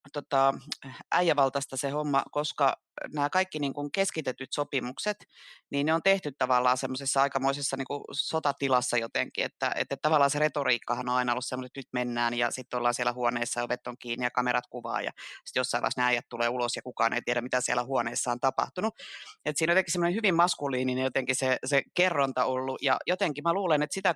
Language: Finnish